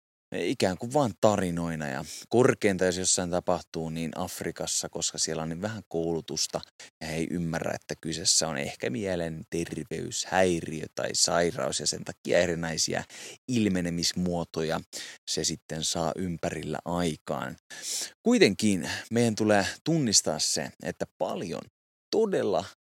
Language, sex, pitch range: Finnish, male, 80-100 Hz